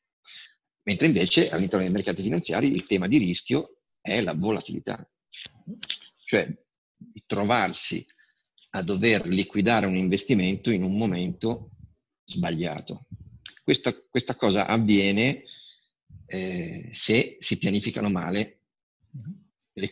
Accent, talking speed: native, 100 wpm